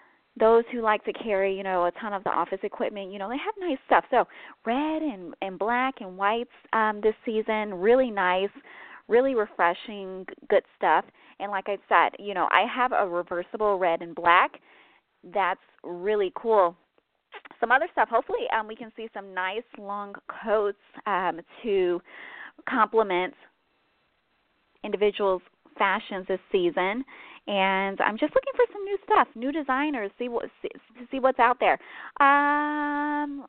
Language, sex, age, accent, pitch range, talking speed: English, female, 20-39, American, 205-285 Hz, 160 wpm